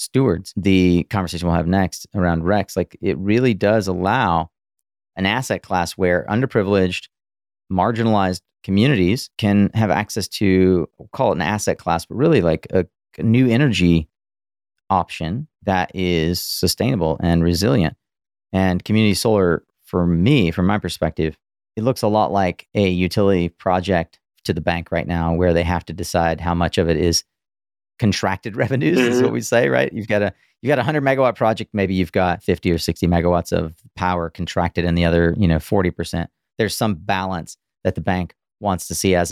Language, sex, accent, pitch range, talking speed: English, male, American, 85-105 Hz, 175 wpm